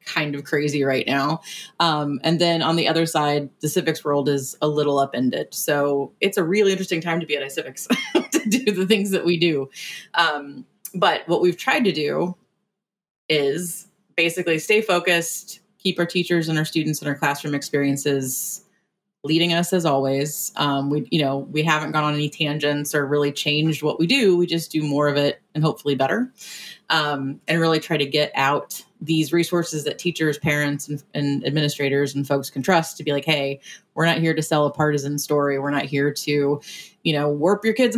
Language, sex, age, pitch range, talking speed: English, female, 30-49, 145-175 Hz, 195 wpm